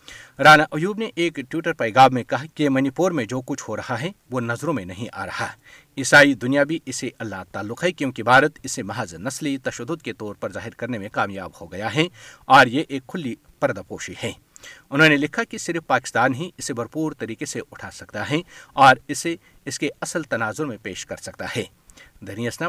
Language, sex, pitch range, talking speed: Urdu, male, 115-155 Hz, 205 wpm